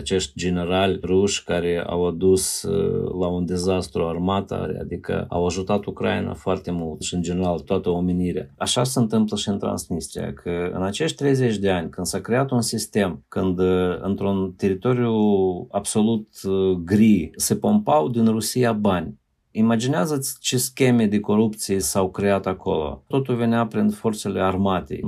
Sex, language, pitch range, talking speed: male, Romanian, 90-115 Hz, 145 wpm